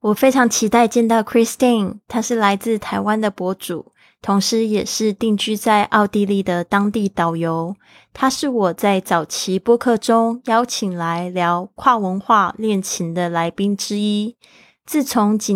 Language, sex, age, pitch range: Chinese, female, 20-39, 185-225 Hz